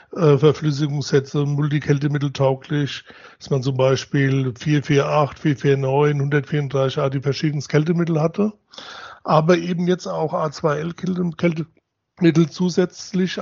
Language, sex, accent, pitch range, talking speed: German, male, German, 145-170 Hz, 95 wpm